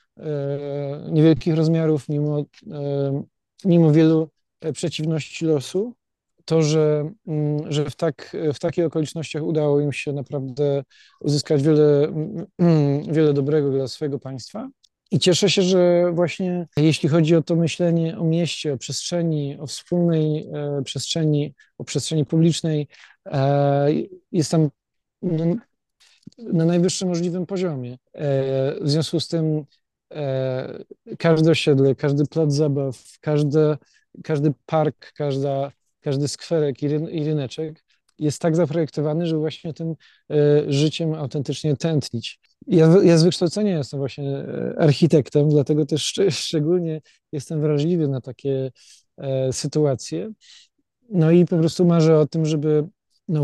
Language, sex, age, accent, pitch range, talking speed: Polish, male, 40-59, native, 145-165 Hz, 110 wpm